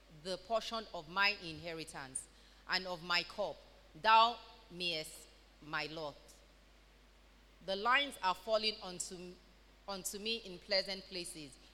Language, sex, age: English, female, 30-49